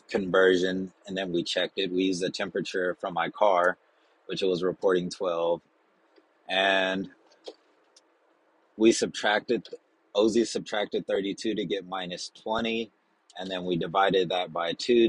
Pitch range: 90-105 Hz